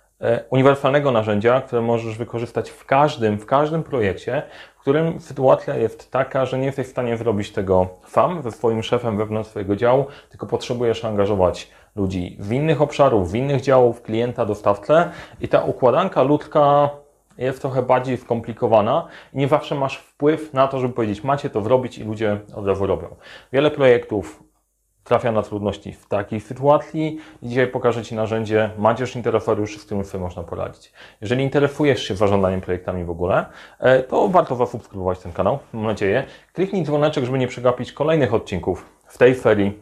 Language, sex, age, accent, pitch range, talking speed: Polish, male, 30-49, native, 110-135 Hz, 165 wpm